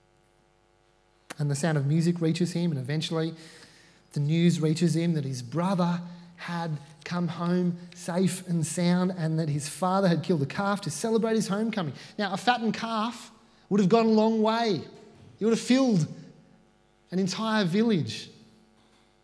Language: English